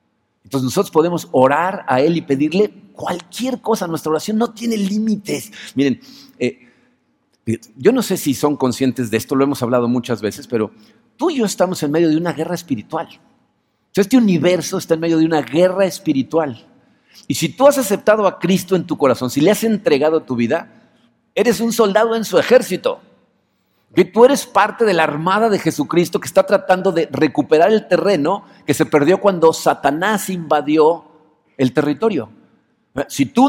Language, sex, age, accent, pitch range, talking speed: Spanish, male, 50-69, Mexican, 140-200 Hz, 175 wpm